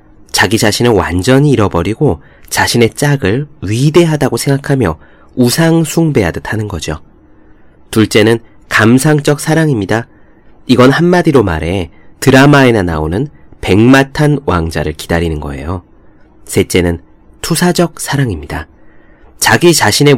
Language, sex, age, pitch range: Korean, male, 30-49, 95-140 Hz